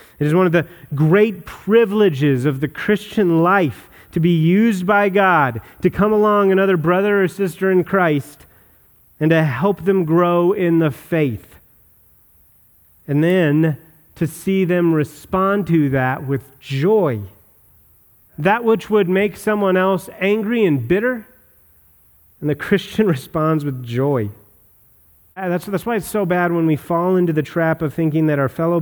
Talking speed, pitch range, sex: 155 wpm, 115-175 Hz, male